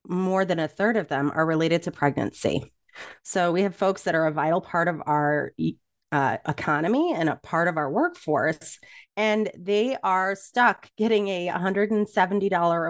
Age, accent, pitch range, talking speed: 30-49, American, 160-205 Hz, 170 wpm